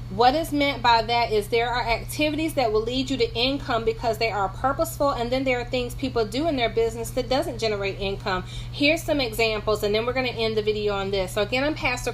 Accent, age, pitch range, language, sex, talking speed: American, 30-49, 195-265 Hz, English, female, 245 wpm